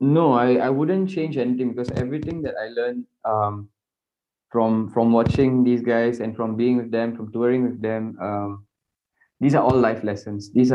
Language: English